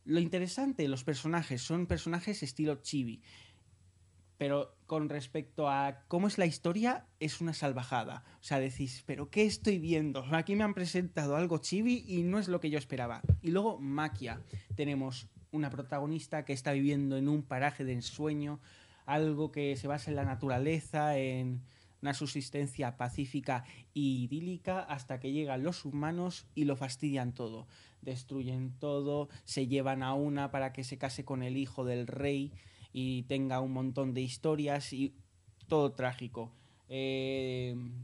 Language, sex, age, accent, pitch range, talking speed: Spanish, male, 20-39, Spanish, 125-155 Hz, 160 wpm